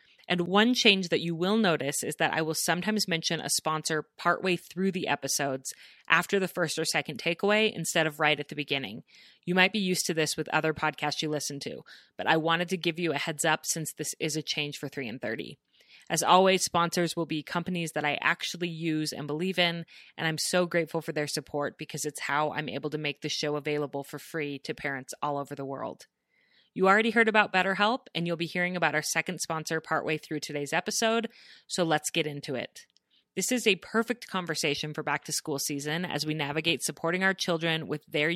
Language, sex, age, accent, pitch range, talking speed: English, female, 30-49, American, 150-180 Hz, 215 wpm